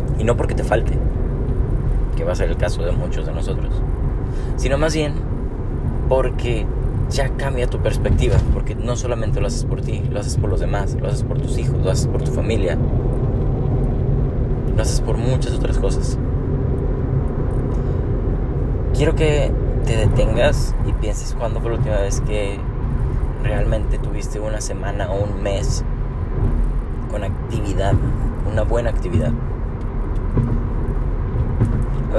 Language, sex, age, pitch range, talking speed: Spanish, male, 20-39, 105-125 Hz, 140 wpm